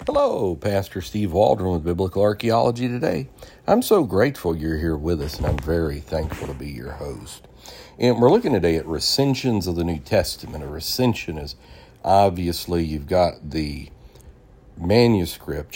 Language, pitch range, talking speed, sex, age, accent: English, 75-100 Hz, 155 wpm, male, 60-79, American